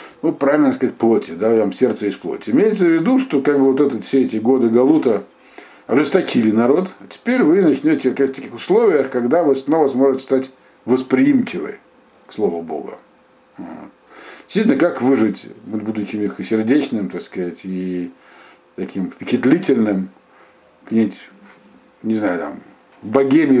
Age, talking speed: 50-69, 140 wpm